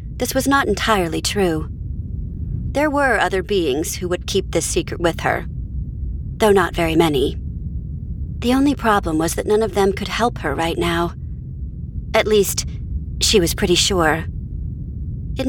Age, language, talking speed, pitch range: 40-59, English, 155 wpm, 170-230 Hz